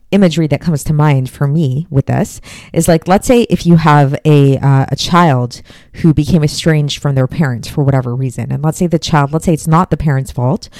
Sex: female